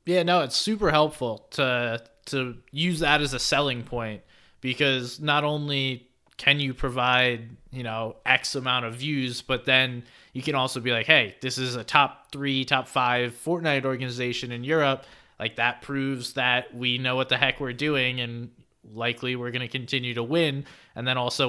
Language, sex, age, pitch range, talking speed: English, male, 20-39, 120-145 Hz, 185 wpm